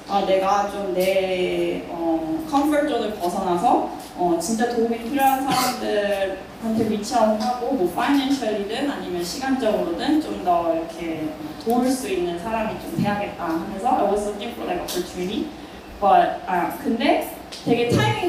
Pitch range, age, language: 190-260 Hz, 20-39, Korean